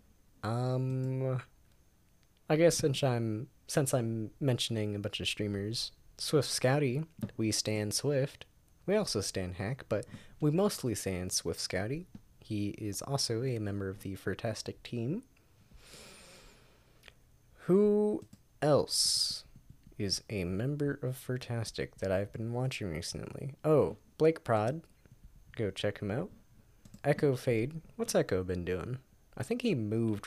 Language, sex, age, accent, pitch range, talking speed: English, male, 20-39, American, 105-140 Hz, 130 wpm